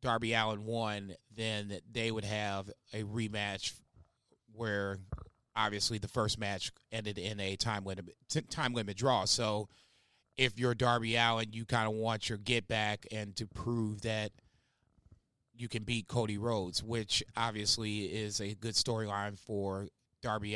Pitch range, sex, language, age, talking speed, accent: 105-120 Hz, male, English, 30-49, 150 wpm, American